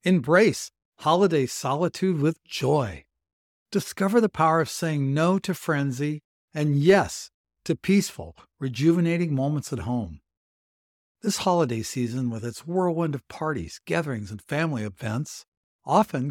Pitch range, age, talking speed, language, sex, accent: 120-165 Hz, 60-79, 125 wpm, English, male, American